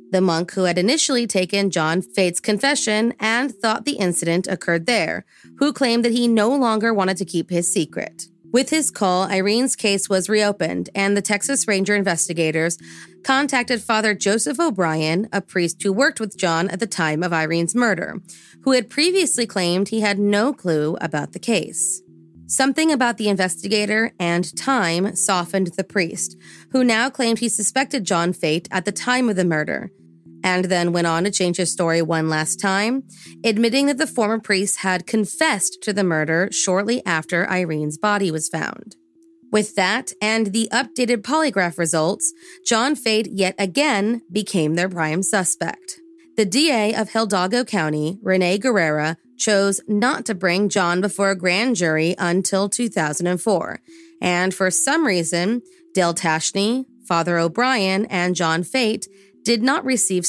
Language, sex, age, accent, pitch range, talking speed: English, female, 30-49, American, 175-235 Hz, 160 wpm